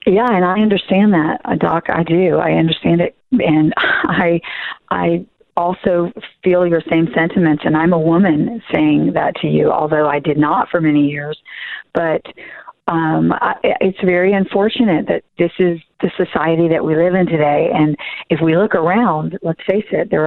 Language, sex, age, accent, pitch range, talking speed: English, female, 40-59, American, 155-190 Hz, 175 wpm